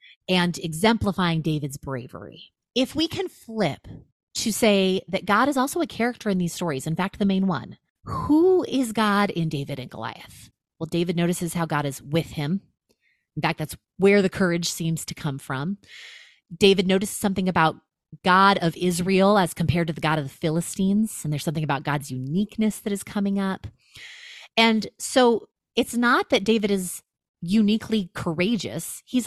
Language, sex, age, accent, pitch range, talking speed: English, female, 30-49, American, 165-215 Hz, 170 wpm